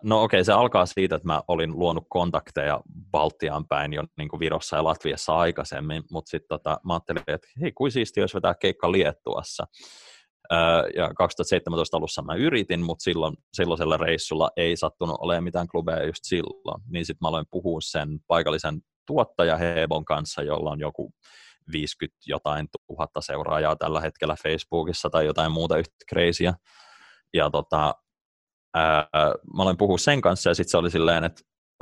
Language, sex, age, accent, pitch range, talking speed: Finnish, male, 20-39, native, 80-95 Hz, 165 wpm